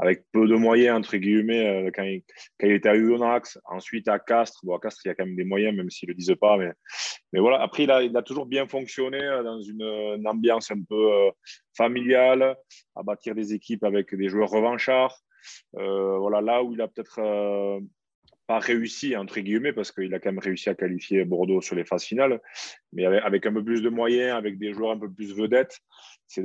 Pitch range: 95-115 Hz